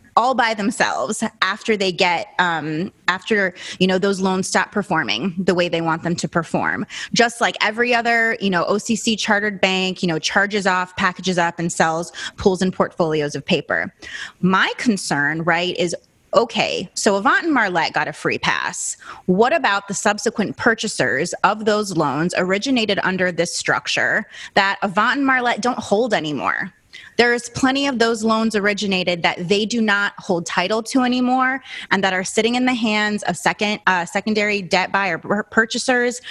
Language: English